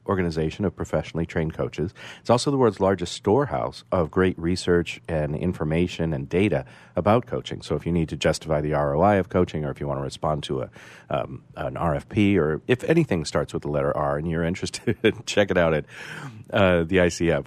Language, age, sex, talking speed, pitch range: English, 40-59, male, 205 wpm, 80-105 Hz